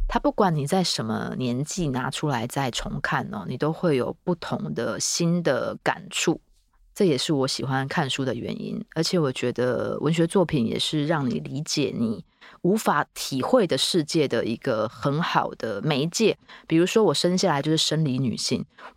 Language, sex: Chinese, female